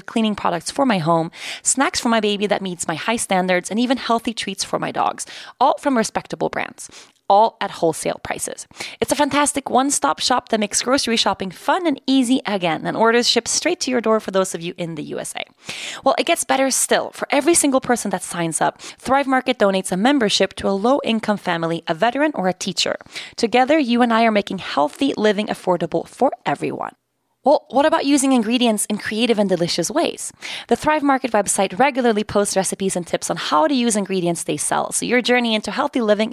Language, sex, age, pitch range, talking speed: English, female, 20-39, 190-260 Hz, 205 wpm